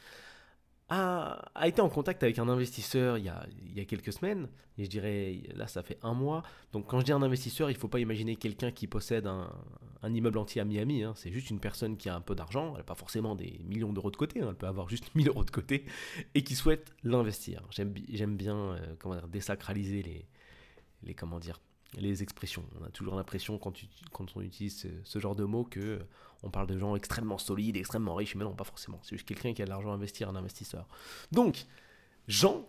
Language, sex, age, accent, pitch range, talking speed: French, male, 20-39, French, 100-135 Hz, 235 wpm